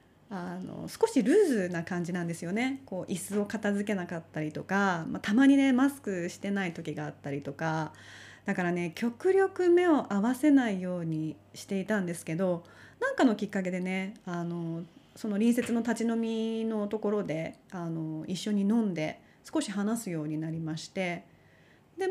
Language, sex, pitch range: Japanese, female, 175-265 Hz